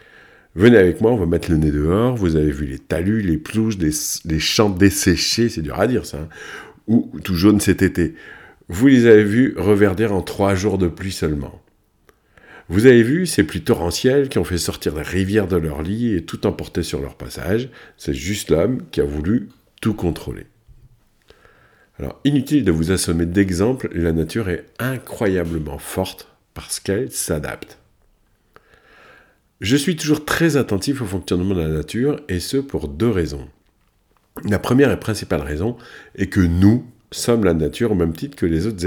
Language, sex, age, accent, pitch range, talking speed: French, male, 50-69, French, 85-120 Hz, 180 wpm